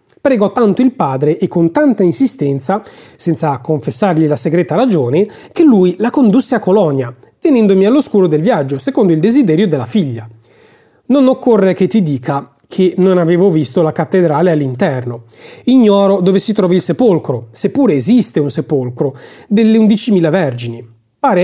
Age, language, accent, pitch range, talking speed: 30-49, Italian, native, 155-230 Hz, 150 wpm